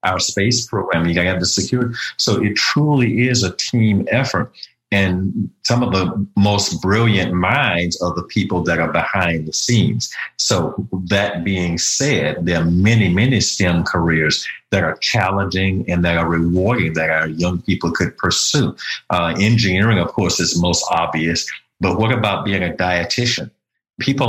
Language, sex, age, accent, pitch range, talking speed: English, male, 50-69, American, 90-105 Hz, 170 wpm